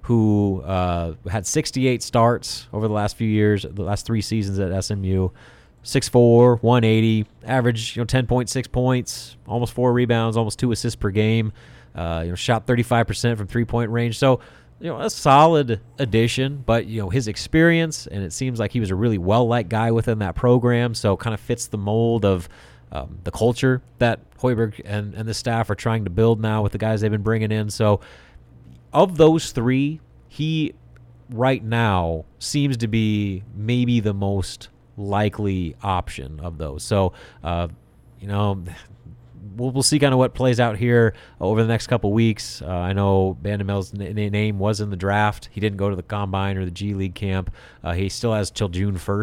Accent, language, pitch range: American, English, 95-120 Hz